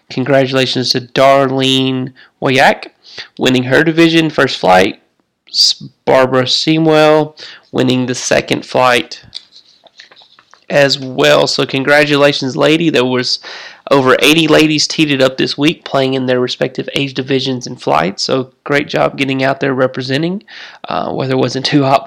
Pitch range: 130-145 Hz